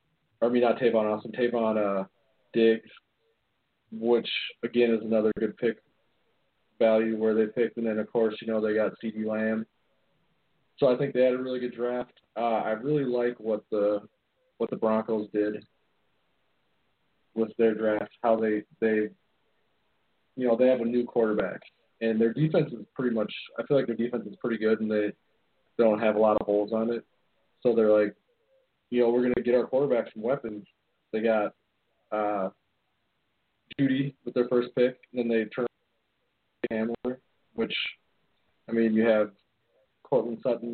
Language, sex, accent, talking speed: English, male, American, 175 wpm